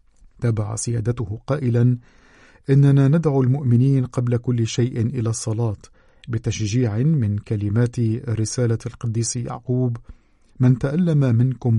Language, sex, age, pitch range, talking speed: Arabic, male, 50-69, 115-130 Hz, 100 wpm